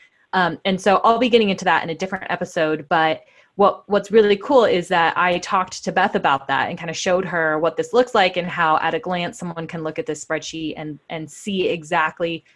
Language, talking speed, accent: English, 235 wpm, American